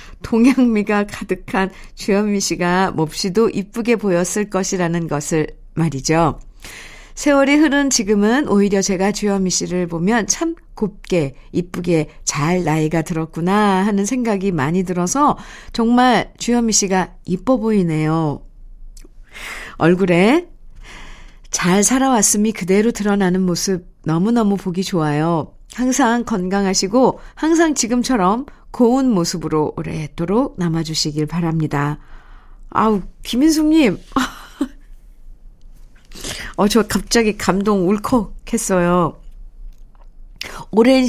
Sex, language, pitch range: female, Korean, 180-230 Hz